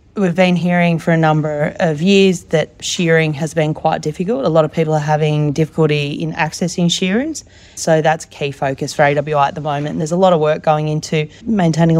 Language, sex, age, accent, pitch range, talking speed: English, female, 30-49, Australian, 150-180 Hz, 215 wpm